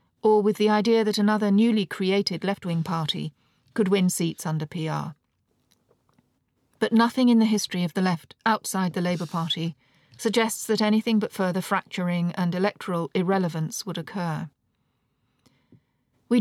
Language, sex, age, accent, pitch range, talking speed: English, female, 40-59, British, 165-215 Hz, 145 wpm